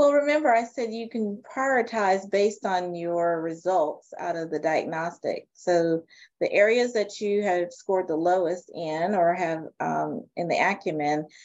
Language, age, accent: English, 30-49, American